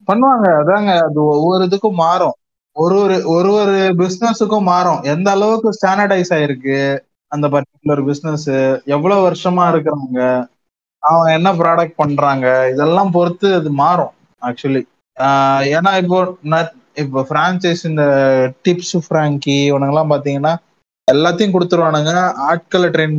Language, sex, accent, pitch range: Tamil, male, native, 140-180 Hz